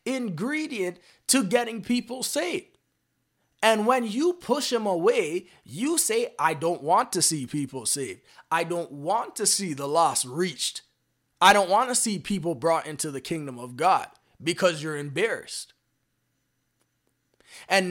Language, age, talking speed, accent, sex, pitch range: English, 20-39, 145 wpm, American, male, 160-245 Hz